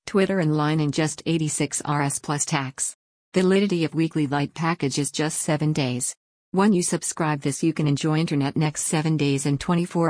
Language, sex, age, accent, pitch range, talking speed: English, female, 50-69, American, 145-165 Hz, 190 wpm